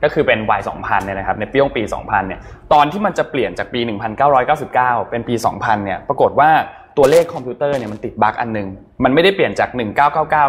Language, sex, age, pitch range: Thai, male, 20-39, 110-140 Hz